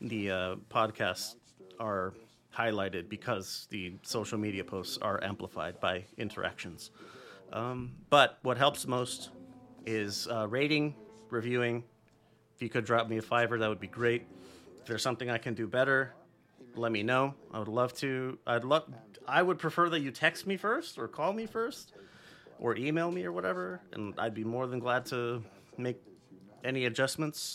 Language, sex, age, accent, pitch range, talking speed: English, male, 30-49, American, 110-140 Hz, 170 wpm